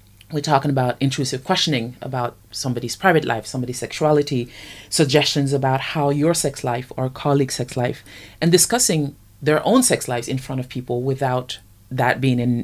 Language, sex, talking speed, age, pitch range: English, female, 165 wpm, 30-49, 125-150 Hz